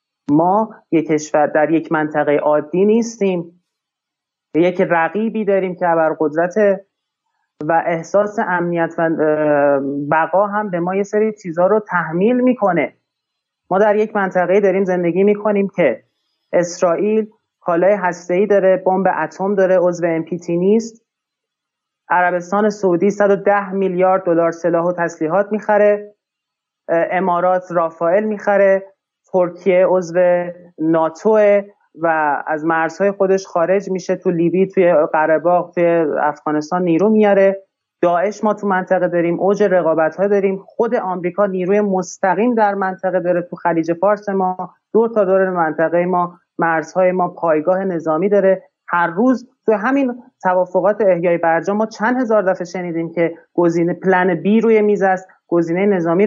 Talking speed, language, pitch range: 130 wpm, Persian, 170-200 Hz